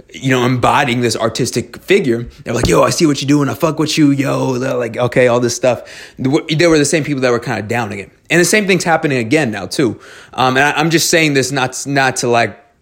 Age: 20-39